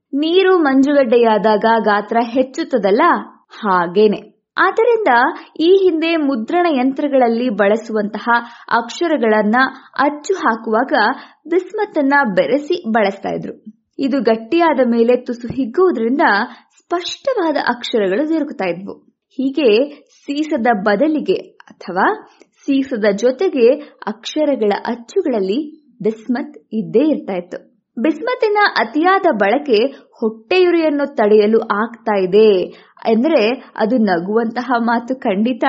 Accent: native